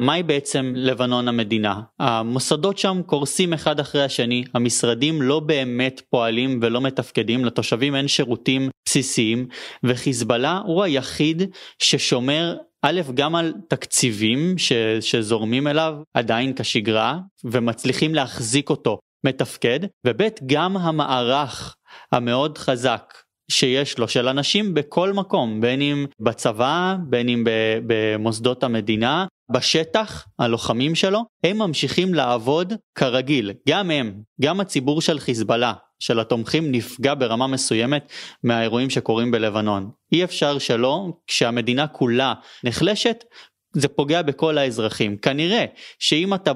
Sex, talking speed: male, 115 wpm